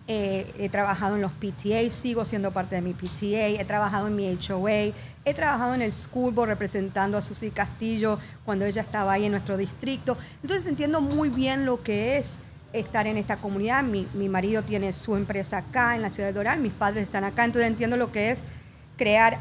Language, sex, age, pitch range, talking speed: English, female, 50-69, 200-250 Hz, 205 wpm